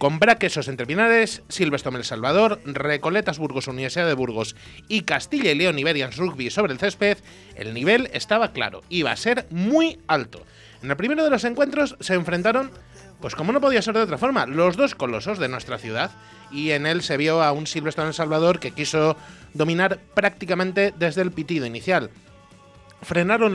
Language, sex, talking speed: Spanish, male, 180 wpm